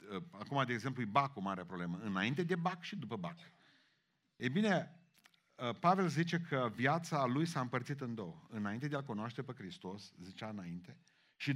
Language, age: Romanian, 50-69